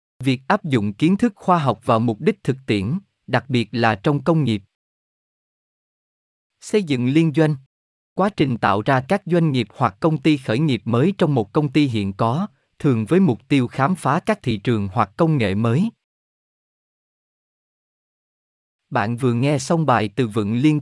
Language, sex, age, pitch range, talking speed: Vietnamese, male, 20-39, 115-160 Hz, 180 wpm